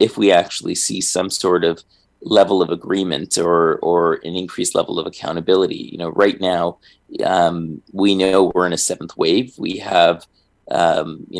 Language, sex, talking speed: English, male, 175 wpm